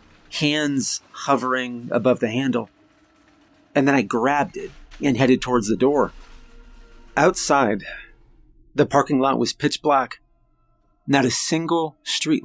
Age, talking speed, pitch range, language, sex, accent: 30-49, 125 wpm, 120-185 Hz, English, male, American